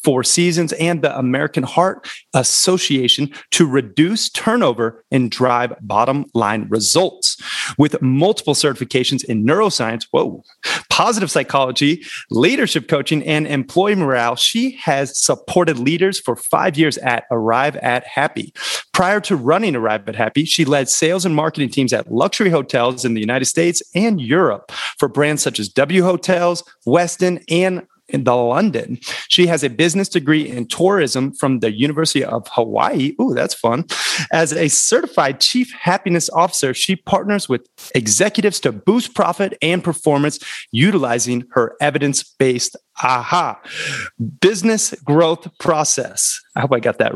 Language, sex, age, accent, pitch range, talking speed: English, male, 30-49, American, 130-180 Hz, 145 wpm